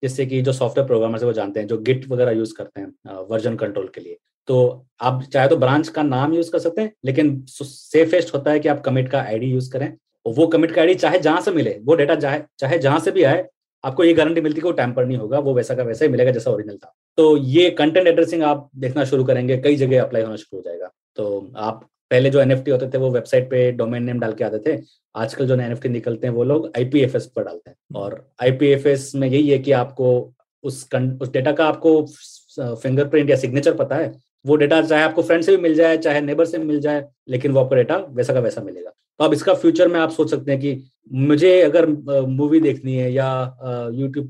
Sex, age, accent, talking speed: male, 30-49, native, 230 wpm